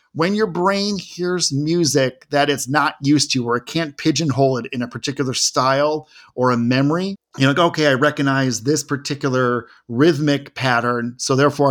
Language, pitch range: English, 125-155 Hz